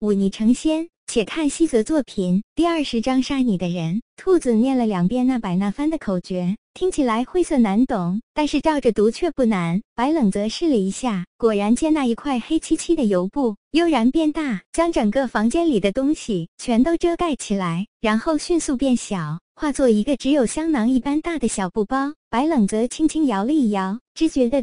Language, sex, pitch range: Chinese, male, 215-310 Hz